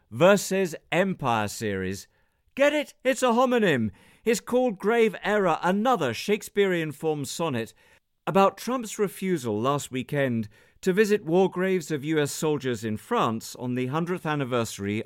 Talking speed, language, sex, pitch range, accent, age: 135 wpm, English, male, 125-190 Hz, British, 50-69